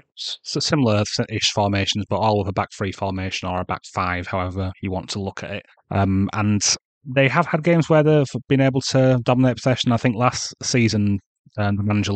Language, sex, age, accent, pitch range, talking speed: English, male, 30-49, British, 100-115 Hz, 200 wpm